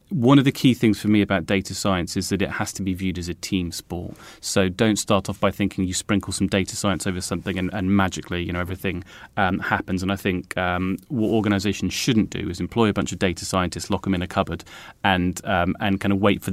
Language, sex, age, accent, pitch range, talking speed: English, male, 30-49, British, 95-105 Hz, 250 wpm